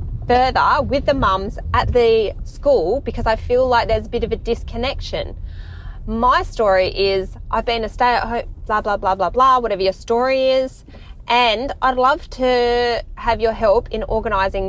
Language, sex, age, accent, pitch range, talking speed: English, female, 20-39, Australian, 185-260 Hz, 180 wpm